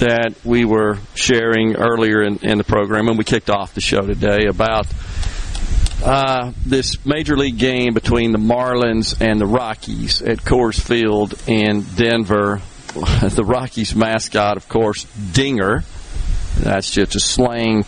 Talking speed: 145 wpm